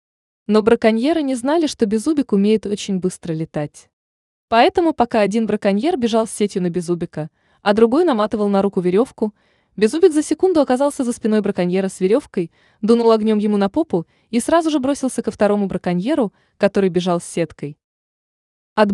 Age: 20-39